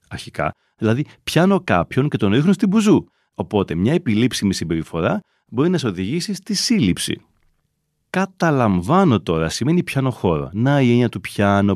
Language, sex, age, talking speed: Greek, male, 30-49, 150 wpm